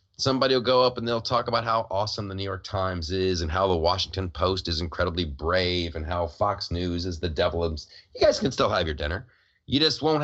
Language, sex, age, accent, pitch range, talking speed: English, male, 30-49, American, 90-120 Hz, 235 wpm